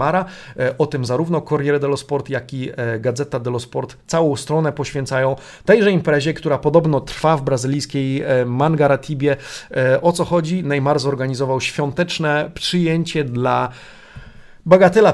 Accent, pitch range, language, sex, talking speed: native, 120-150 Hz, Polish, male, 125 wpm